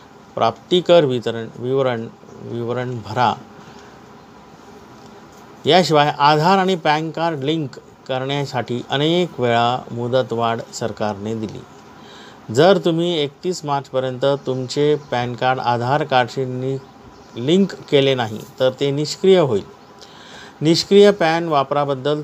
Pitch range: 120-150 Hz